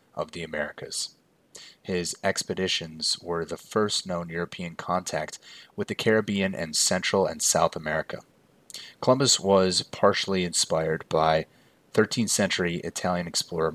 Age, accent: 30-49, American